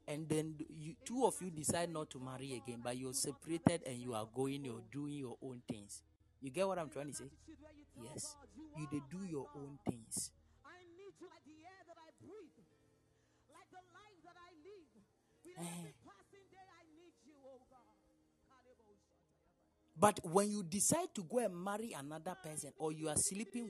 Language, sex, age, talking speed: English, male, 40-59, 160 wpm